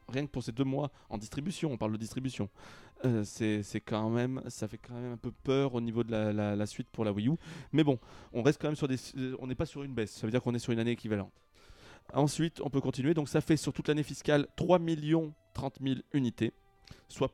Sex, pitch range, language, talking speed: male, 110-135 Hz, French, 230 wpm